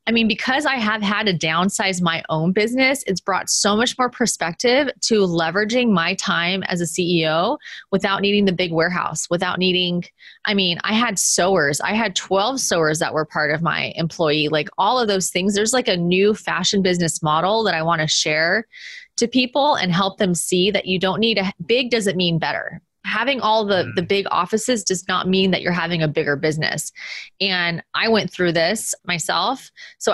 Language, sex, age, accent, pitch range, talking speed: English, female, 20-39, American, 175-220 Hz, 200 wpm